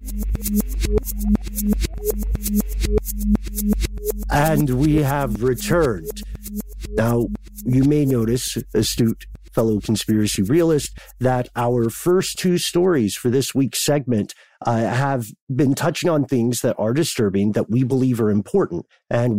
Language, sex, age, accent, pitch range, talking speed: English, male, 50-69, American, 115-150 Hz, 110 wpm